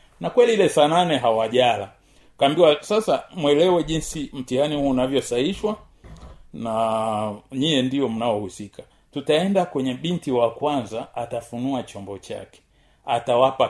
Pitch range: 125-185 Hz